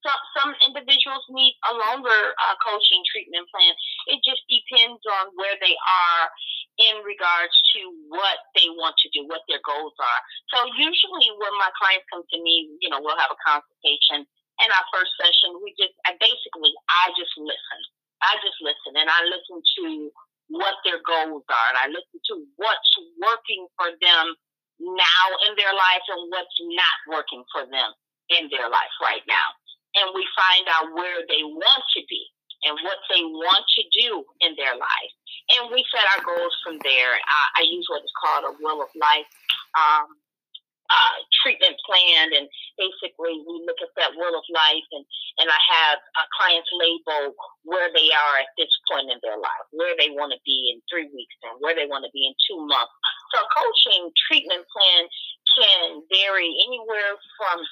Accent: American